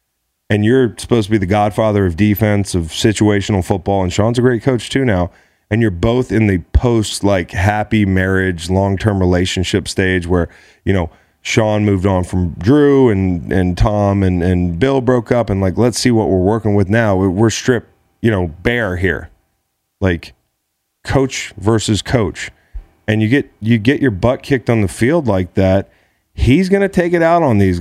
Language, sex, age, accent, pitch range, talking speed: English, male, 30-49, American, 95-125 Hz, 190 wpm